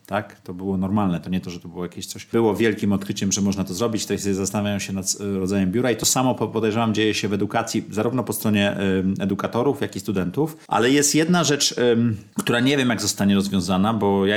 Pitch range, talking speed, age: 100-120 Hz, 215 wpm, 30-49